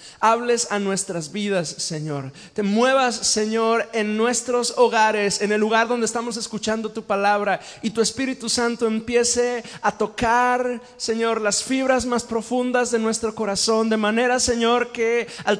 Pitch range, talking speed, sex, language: 190-240 Hz, 150 wpm, male, Spanish